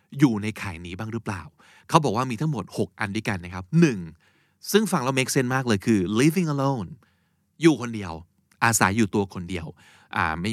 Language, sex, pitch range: Thai, male, 100-145 Hz